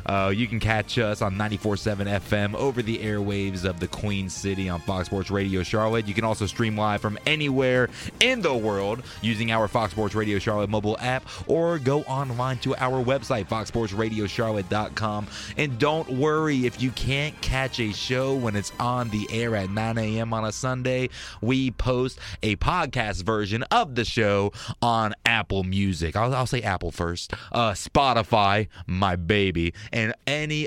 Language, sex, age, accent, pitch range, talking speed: English, male, 30-49, American, 100-130 Hz, 170 wpm